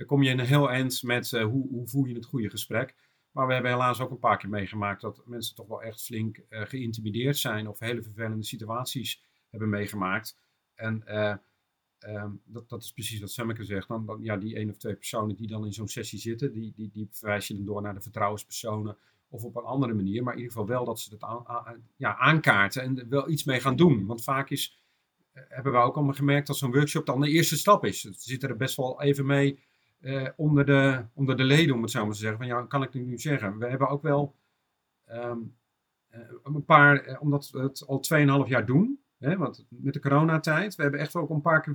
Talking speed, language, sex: 240 wpm, Dutch, male